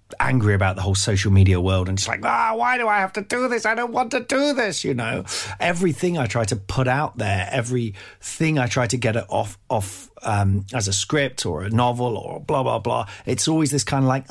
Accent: British